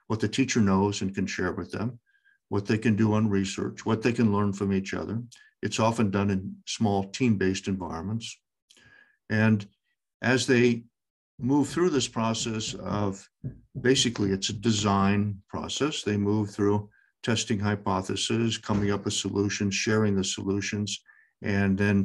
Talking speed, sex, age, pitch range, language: 150 wpm, male, 50-69, 95-110 Hz, English